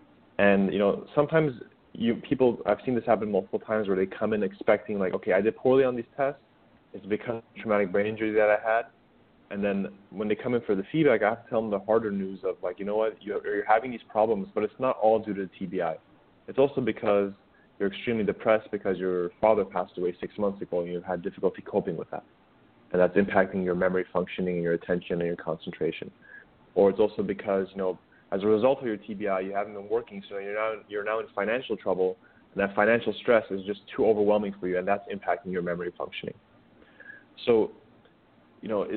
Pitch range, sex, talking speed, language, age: 95-115 Hz, male, 220 wpm, English, 20-39